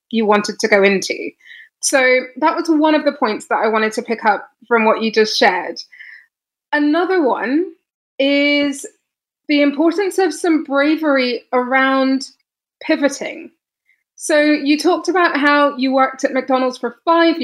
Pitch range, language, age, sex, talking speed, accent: 235-295 Hz, English, 20-39, female, 150 wpm, British